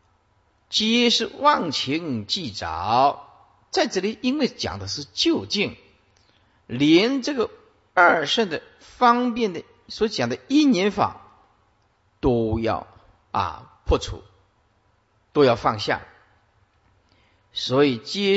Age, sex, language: 50-69, male, Chinese